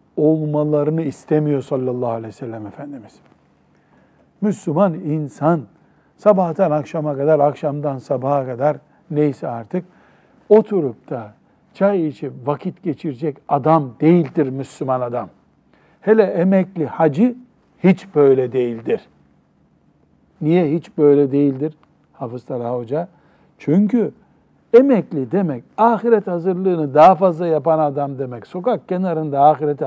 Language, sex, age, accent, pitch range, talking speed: Turkish, male, 60-79, native, 140-175 Hz, 105 wpm